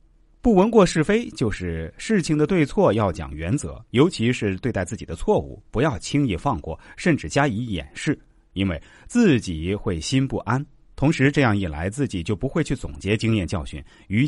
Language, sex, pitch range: Chinese, male, 100-160 Hz